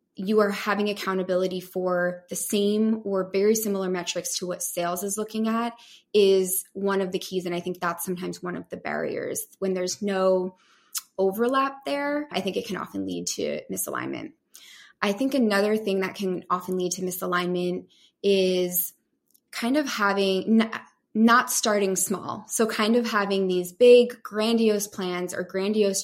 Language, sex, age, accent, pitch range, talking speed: English, female, 20-39, American, 185-220 Hz, 165 wpm